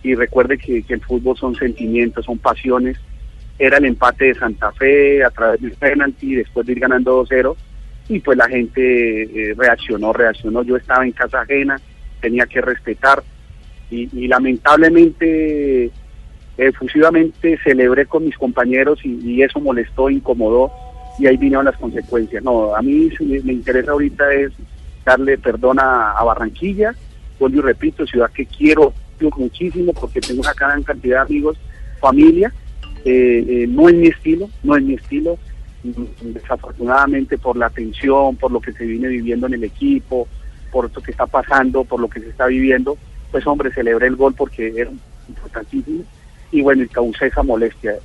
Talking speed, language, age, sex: 170 wpm, Spanish, 40-59, male